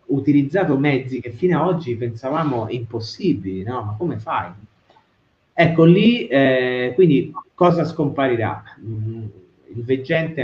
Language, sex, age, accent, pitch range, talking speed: Italian, male, 30-49, native, 120-175 Hz, 115 wpm